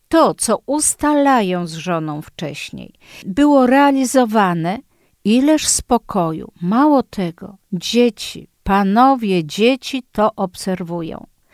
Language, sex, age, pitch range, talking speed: Polish, female, 50-69, 190-245 Hz, 90 wpm